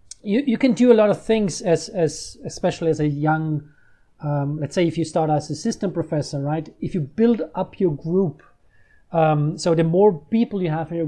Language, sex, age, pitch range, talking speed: English, male, 30-49, 150-170 Hz, 215 wpm